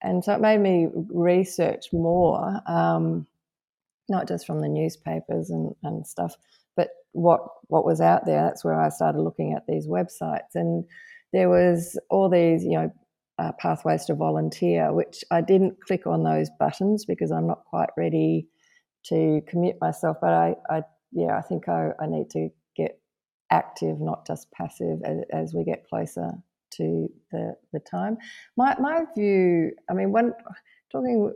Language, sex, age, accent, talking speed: English, female, 30-49, Australian, 165 wpm